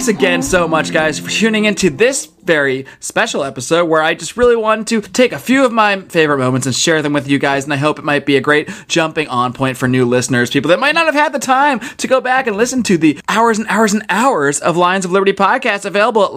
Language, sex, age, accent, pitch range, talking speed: English, male, 30-49, American, 145-205 Hz, 265 wpm